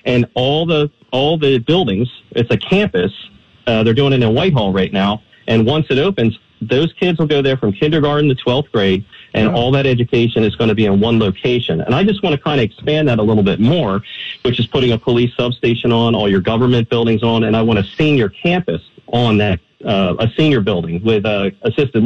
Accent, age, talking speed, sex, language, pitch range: American, 40-59, 225 wpm, male, English, 110-145 Hz